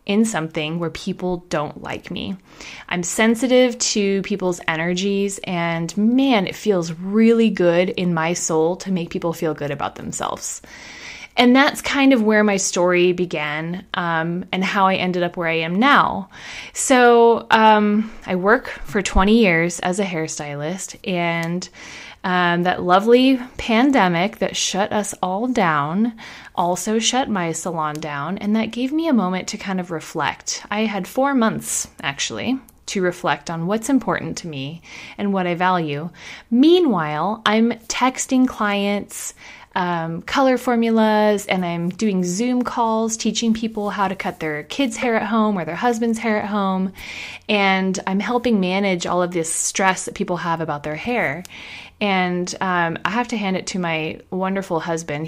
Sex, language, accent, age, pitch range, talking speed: female, English, American, 20-39, 170-225 Hz, 160 wpm